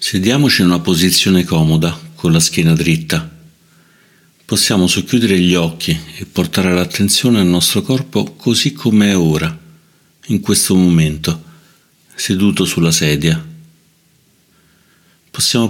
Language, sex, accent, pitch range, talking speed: Italian, male, native, 85-120 Hz, 115 wpm